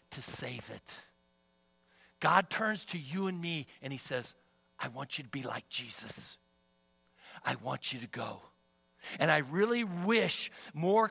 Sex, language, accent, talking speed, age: male, English, American, 155 wpm, 60-79